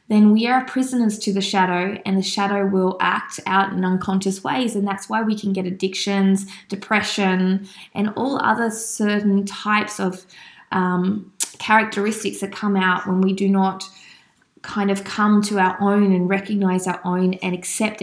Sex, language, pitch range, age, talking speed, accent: female, English, 190-215 Hz, 20-39, 170 wpm, Australian